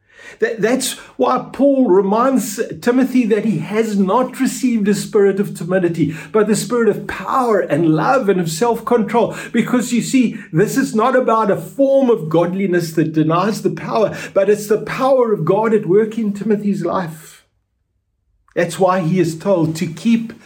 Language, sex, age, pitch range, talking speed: English, male, 60-79, 155-215 Hz, 165 wpm